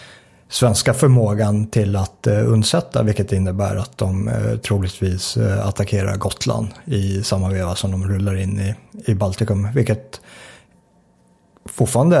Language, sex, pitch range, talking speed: Swedish, male, 100-120 Hz, 115 wpm